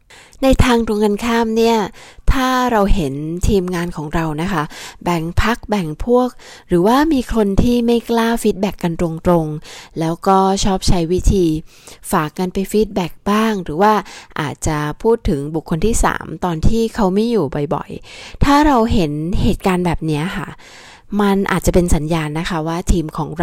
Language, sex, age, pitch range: Thai, female, 20-39, 165-210 Hz